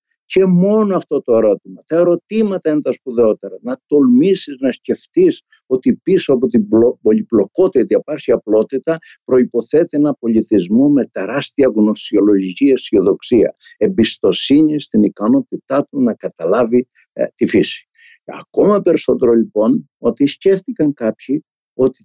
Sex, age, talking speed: male, 60-79, 125 wpm